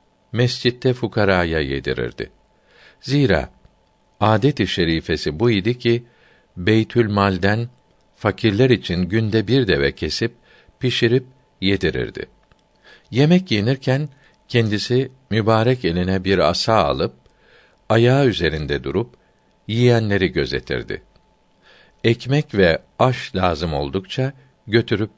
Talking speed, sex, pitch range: 90 wpm, male, 95-125 Hz